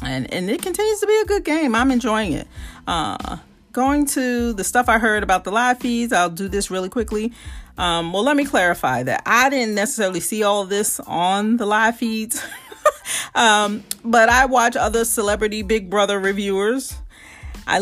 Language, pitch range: English, 175-230 Hz